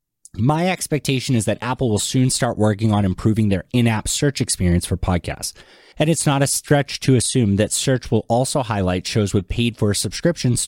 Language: English